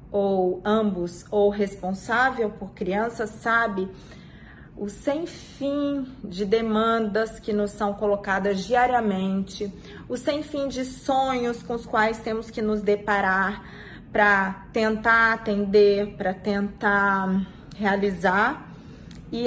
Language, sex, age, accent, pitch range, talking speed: Portuguese, female, 30-49, Brazilian, 200-235 Hz, 110 wpm